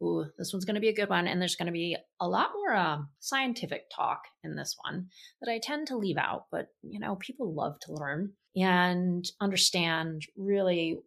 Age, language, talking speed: 30-49, English, 210 wpm